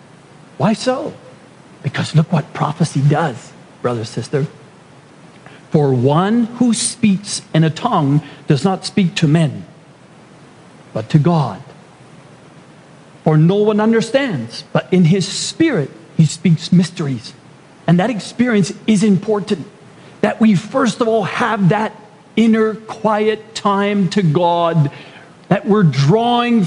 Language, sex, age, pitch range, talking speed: English, male, 40-59, 150-200 Hz, 125 wpm